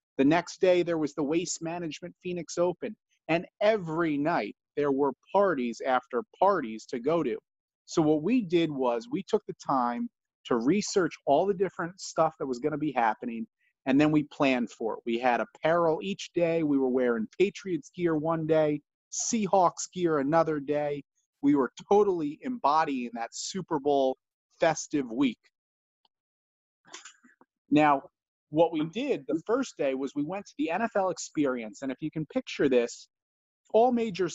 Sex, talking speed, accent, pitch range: male, 165 wpm, American, 140-195 Hz